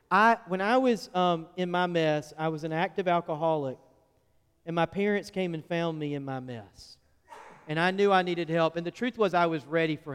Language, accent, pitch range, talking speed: English, American, 135-170 Hz, 215 wpm